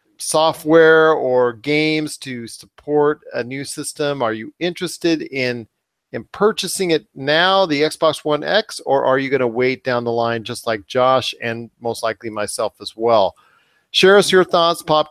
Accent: American